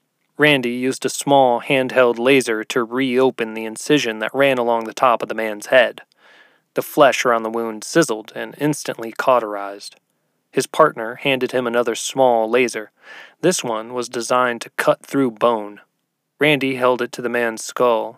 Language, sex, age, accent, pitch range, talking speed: English, male, 20-39, American, 115-135 Hz, 165 wpm